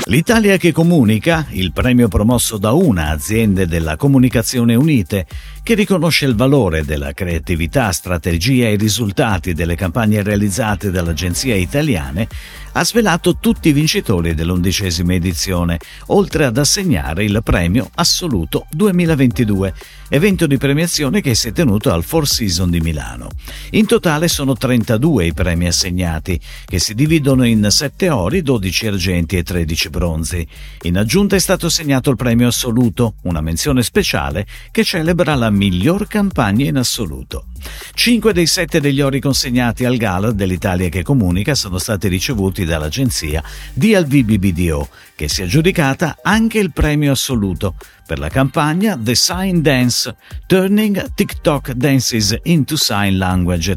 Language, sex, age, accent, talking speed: Italian, male, 50-69, native, 140 wpm